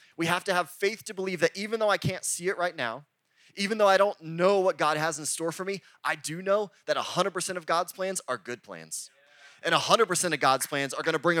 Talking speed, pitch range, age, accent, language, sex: 255 wpm, 145-190 Hz, 20-39, American, English, male